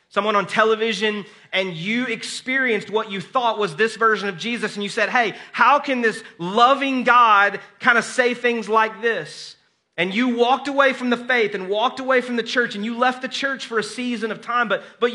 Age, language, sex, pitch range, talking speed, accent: 30-49, English, male, 185-230 Hz, 215 wpm, American